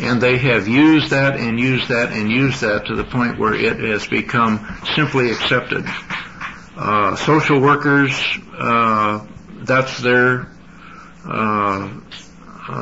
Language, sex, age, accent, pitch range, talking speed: English, male, 60-79, American, 110-130 Hz, 130 wpm